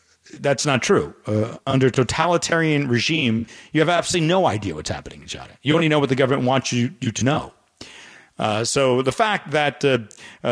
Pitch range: 110-155 Hz